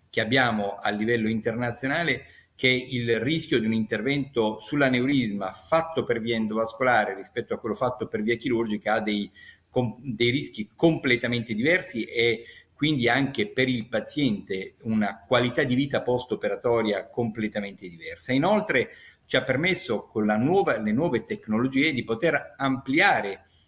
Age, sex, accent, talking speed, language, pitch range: 50-69, male, native, 140 wpm, Italian, 110-135 Hz